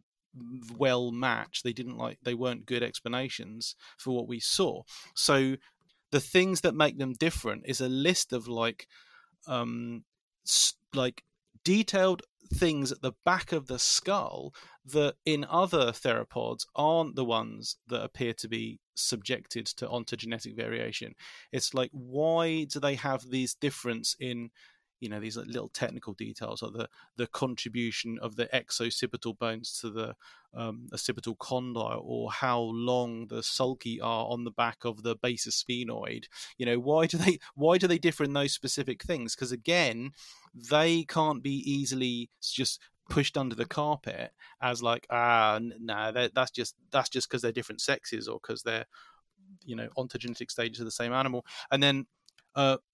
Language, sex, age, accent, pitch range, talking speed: English, male, 30-49, British, 120-145 Hz, 160 wpm